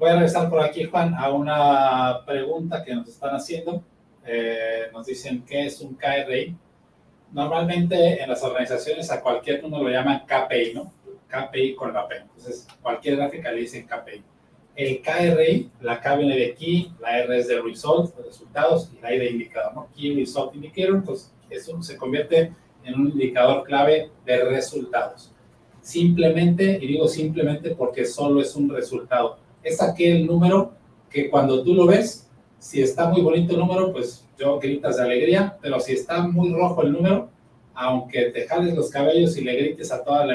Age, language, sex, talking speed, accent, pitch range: 30-49, Spanish, male, 180 wpm, Mexican, 130-170 Hz